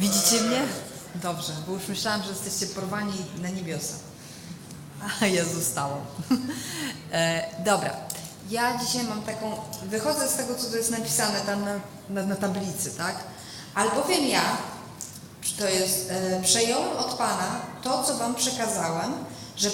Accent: native